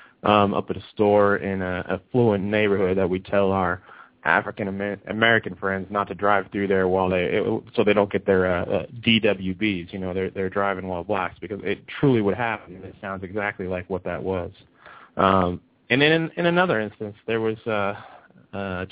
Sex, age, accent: male, 30-49, American